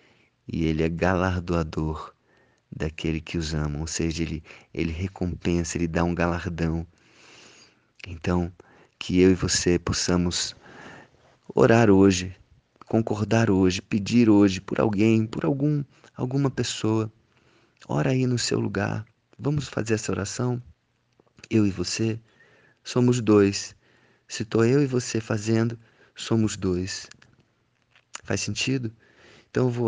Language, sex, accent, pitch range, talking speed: Portuguese, male, Brazilian, 90-110 Hz, 125 wpm